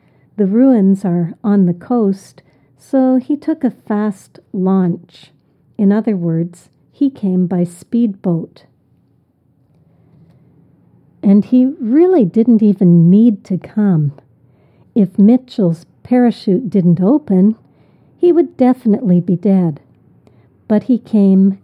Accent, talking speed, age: American, 110 wpm, 60-79